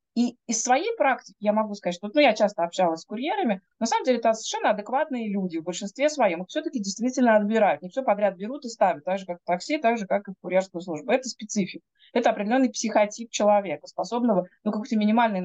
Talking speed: 220 wpm